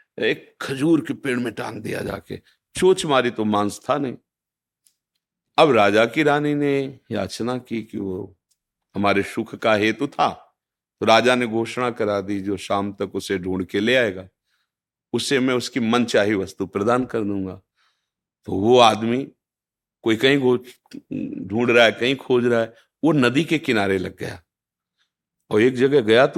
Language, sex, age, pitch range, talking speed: Hindi, male, 50-69, 100-135 Hz, 170 wpm